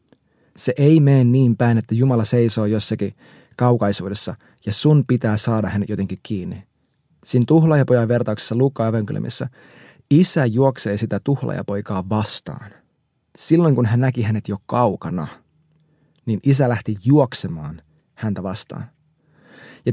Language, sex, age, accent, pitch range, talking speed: Finnish, male, 20-39, native, 110-140 Hz, 120 wpm